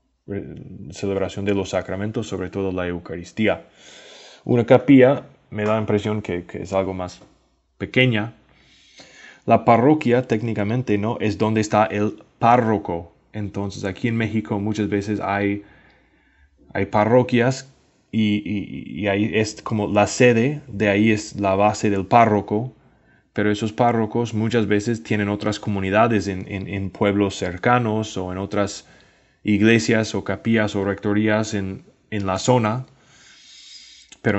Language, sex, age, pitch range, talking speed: English, male, 20-39, 100-115 Hz, 140 wpm